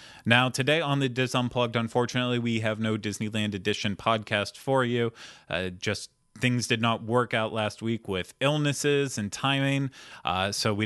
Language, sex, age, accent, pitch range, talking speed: English, male, 30-49, American, 100-125 Hz, 170 wpm